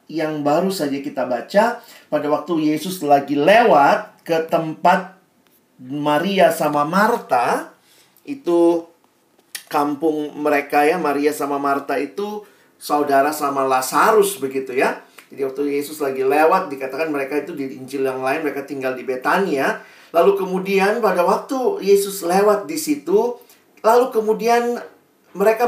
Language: Indonesian